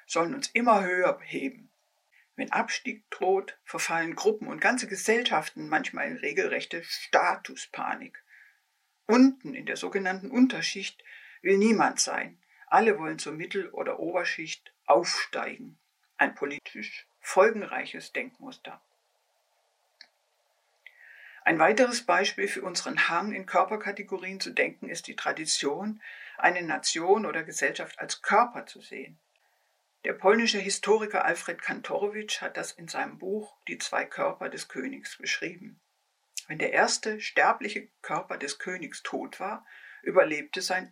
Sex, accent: female, German